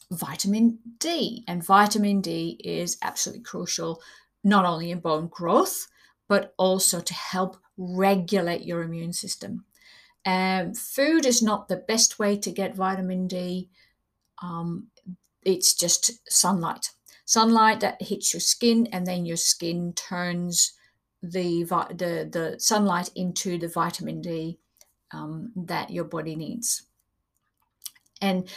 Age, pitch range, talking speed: 50-69, 175-205 Hz, 130 wpm